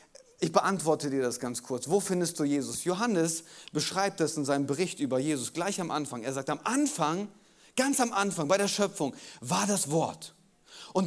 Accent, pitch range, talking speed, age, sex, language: German, 140-200 Hz, 190 wpm, 30-49, male, German